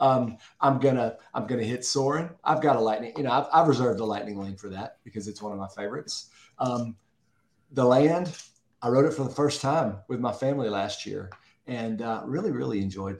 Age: 40-59